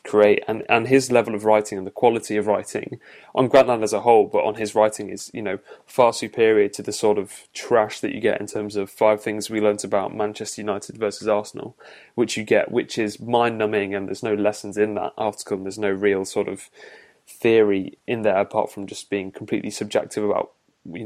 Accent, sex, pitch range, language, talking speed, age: British, male, 105-115 Hz, English, 215 wpm, 20-39